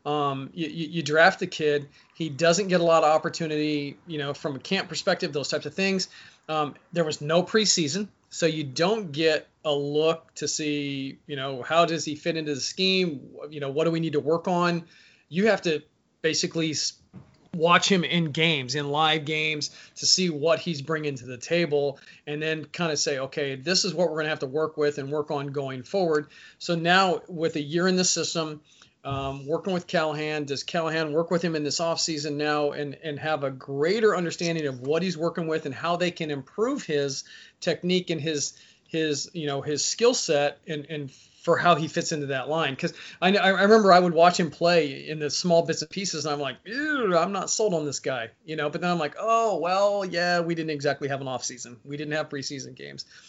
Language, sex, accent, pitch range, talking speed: English, male, American, 145-175 Hz, 220 wpm